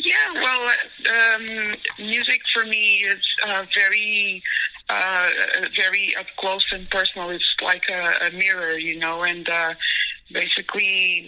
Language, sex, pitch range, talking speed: French, female, 175-205 Hz, 130 wpm